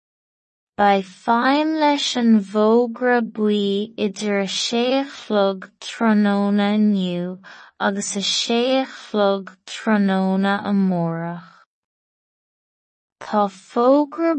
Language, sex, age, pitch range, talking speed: English, female, 20-39, 195-225 Hz, 55 wpm